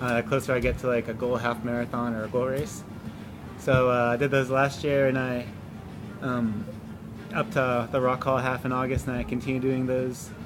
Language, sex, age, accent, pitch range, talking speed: English, male, 20-39, American, 115-130 Hz, 220 wpm